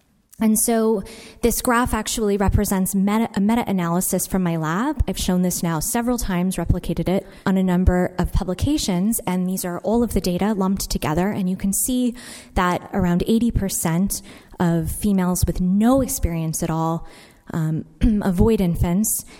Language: English